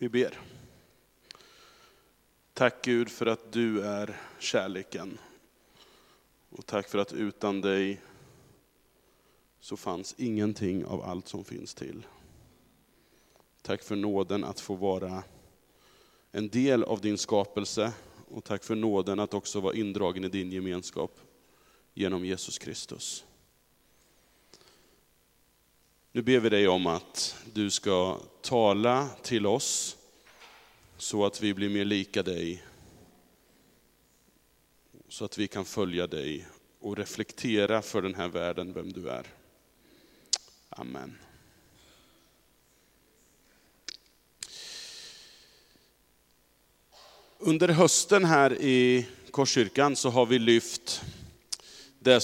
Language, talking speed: Swedish, 105 wpm